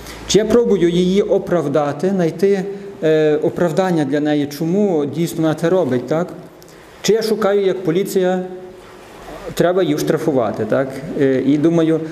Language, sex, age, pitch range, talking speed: Ukrainian, male, 40-59, 145-195 Hz, 130 wpm